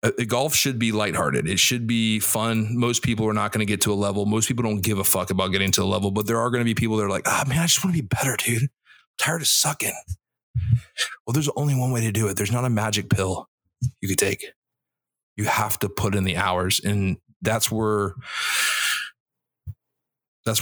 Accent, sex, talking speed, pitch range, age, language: American, male, 225 wpm, 105-130 Hz, 30-49, English